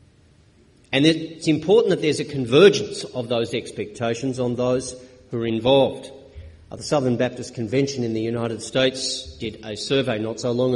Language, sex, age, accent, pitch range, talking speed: English, male, 40-59, Australian, 105-135 Hz, 160 wpm